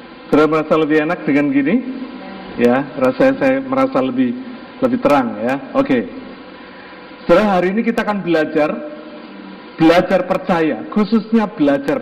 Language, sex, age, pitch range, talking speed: Indonesian, male, 50-69, 165-265 Hz, 130 wpm